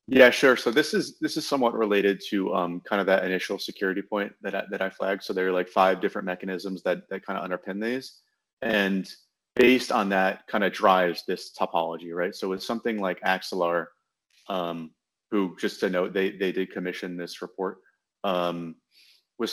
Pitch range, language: 90-105 Hz, English